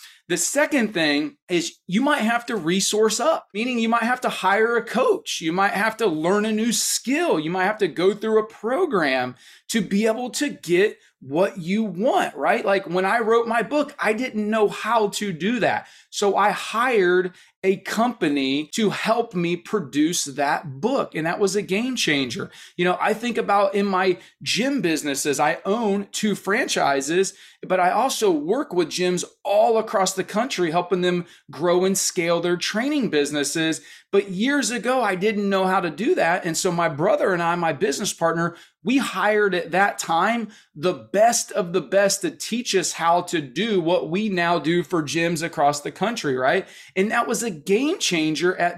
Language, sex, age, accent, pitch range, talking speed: English, male, 30-49, American, 170-225 Hz, 190 wpm